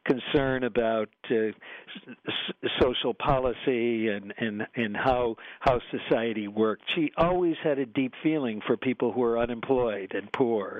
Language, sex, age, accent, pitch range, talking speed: English, male, 50-69, American, 125-165 Hz, 140 wpm